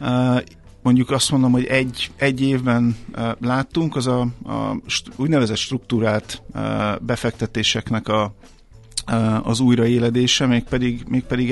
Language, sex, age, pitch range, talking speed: Hungarian, male, 50-69, 110-130 Hz, 95 wpm